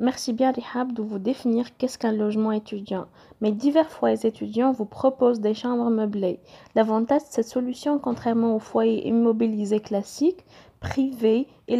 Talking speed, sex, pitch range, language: 150 wpm, female, 230-275 Hz, French